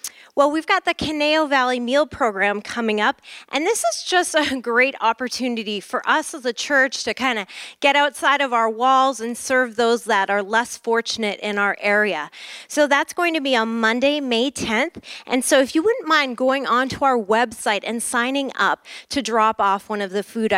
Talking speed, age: 200 wpm, 30-49